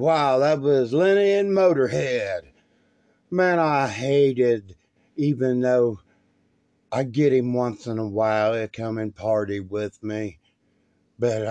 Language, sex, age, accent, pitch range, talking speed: English, male, 60-79, American, 105-140 Hz, 130 wpm